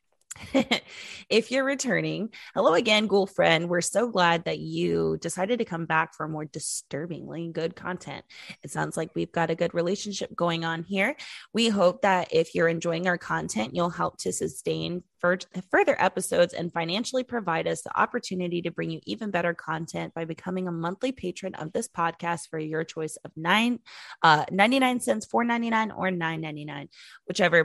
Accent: American